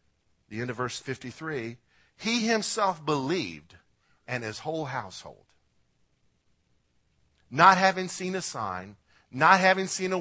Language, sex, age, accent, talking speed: English, male, 50-69, American, 125 wpm